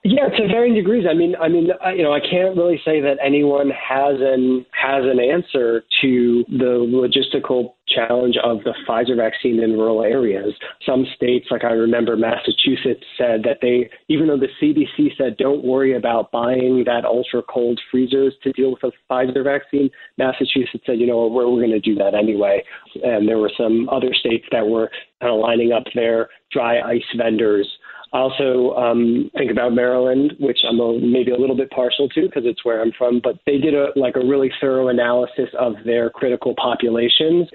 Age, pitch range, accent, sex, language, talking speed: 30-49, 115-135 Hz, American, male, English, 195 wpm